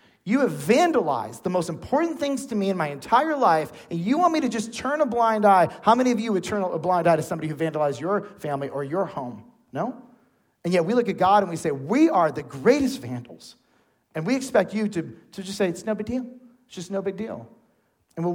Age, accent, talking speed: 40-59, American, 245 wpm